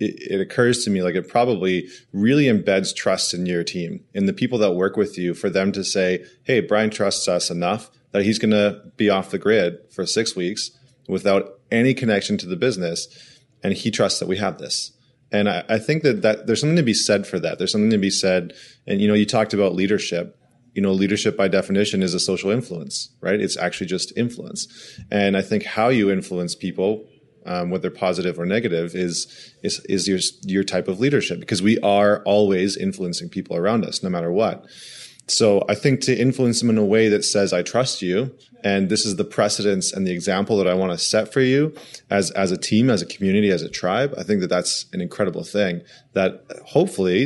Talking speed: 215 wpm